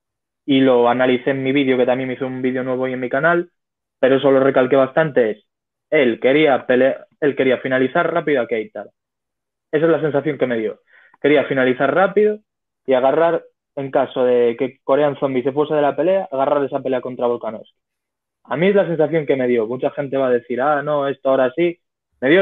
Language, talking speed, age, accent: Spanish, 215 wpm, 20-39, Spanish